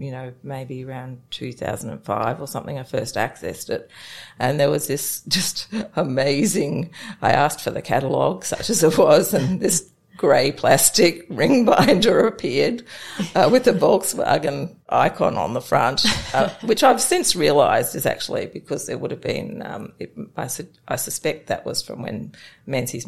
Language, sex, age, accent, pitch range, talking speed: English, female, 40-59, Australian, 130-155 Hz, 160 wpm